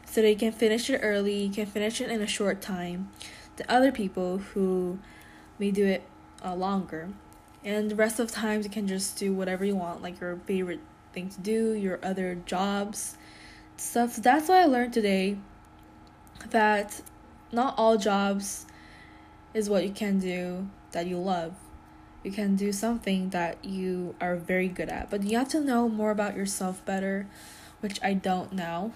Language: Korean